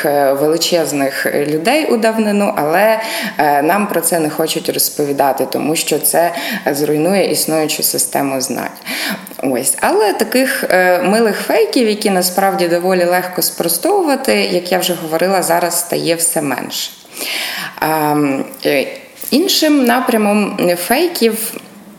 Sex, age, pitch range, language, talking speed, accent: female, 20-39, 160-200 Hz, Ukrainian, 105 wpm, native